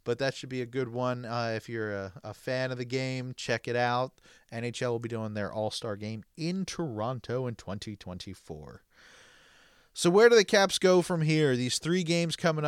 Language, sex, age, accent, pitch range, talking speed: English, male, 30-49, American, 100-135 Hz, 200 wpm